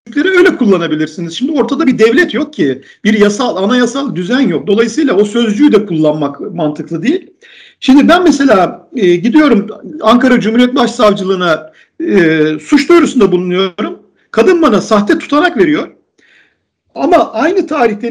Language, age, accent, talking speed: Turkish, 50-69, native, 135 wpm